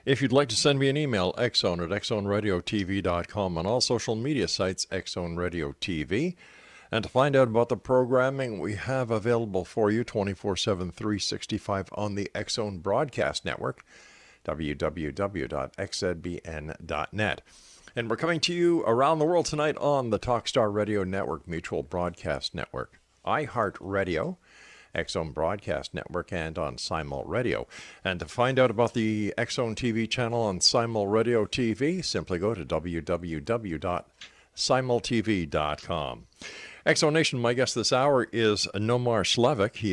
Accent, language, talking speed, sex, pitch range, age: American, English, 135 wpm, male, 90-120 Hz, 50-69